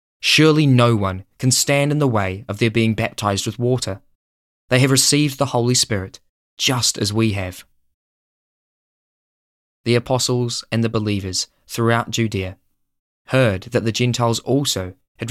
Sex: male